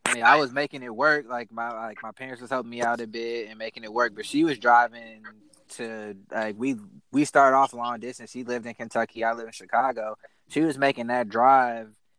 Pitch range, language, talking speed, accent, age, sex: 120-145 Hz, English, 230 wpm, American, 20-39, male